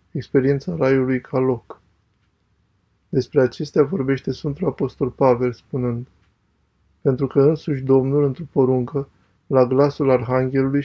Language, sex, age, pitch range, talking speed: Romanian, male, 20-39, 120-140 Hz, 110 wpm